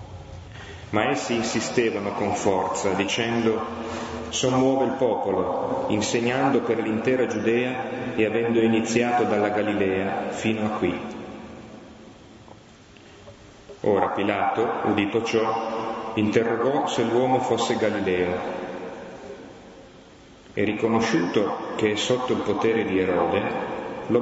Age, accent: 30-49, native